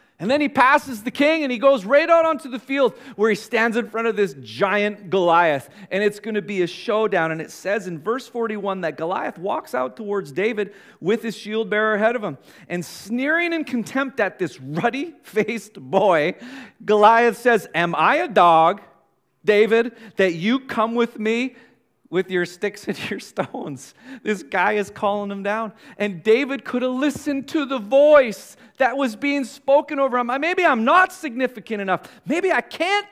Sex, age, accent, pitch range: male, 40-59, American, 195-260 Hz